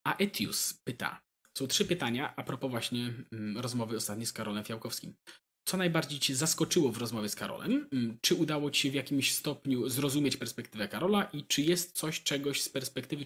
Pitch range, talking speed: 130-175 Hz, 175 wpm